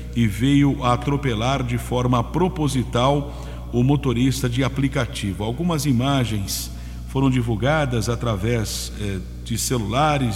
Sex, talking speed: male, 105 wpm